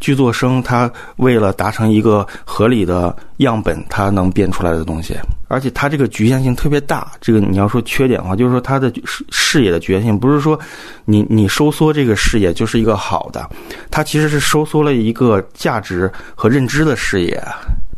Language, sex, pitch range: Chinese, male, 95-130 Hz